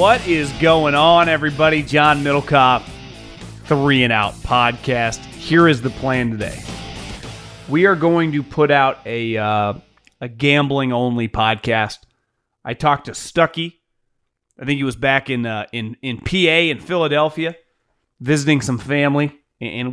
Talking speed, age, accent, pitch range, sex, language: 145 wpm, 30-49, American, 125-155 Hz, male, English